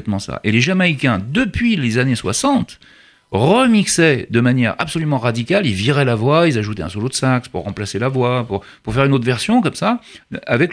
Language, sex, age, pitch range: French, male, 40-59, 110-165 Hz